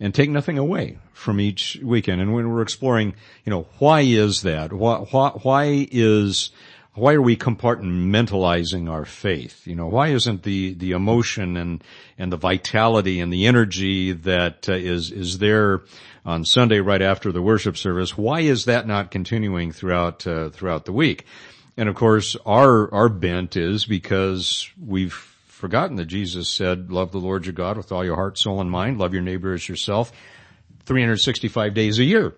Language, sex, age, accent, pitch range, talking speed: English, male, 50-69, American, 95-120 Hz, 180 wpm